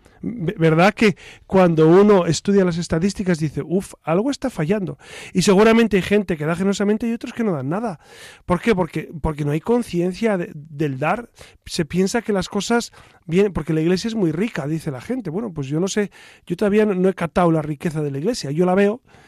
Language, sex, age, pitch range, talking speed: Spanish, male, 40-59, 155-200 Hz, 215 wpm